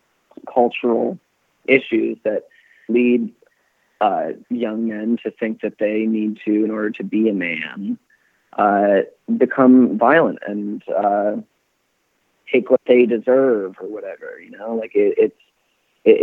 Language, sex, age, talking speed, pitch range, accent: English, male, 30-49, 135 wpm, 105-120 Hz, American